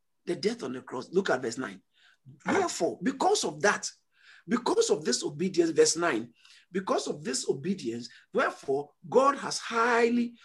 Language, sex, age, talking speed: English, male, 50-69, 155 wpm